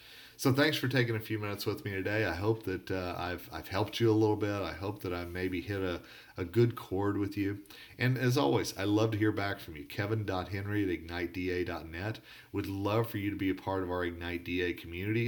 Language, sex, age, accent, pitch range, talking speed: English, male, 40-59, American, 90-115 Hz, 230 wpm